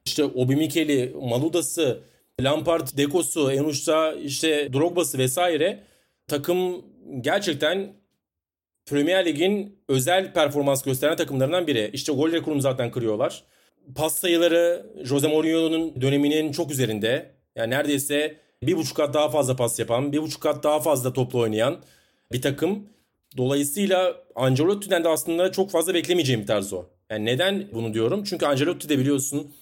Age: 40-59